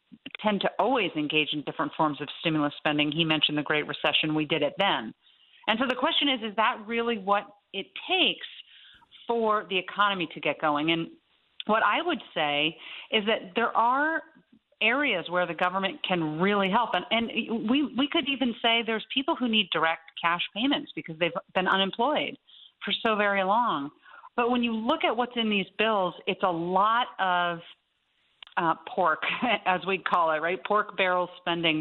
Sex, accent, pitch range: female, American, 165-225 Hz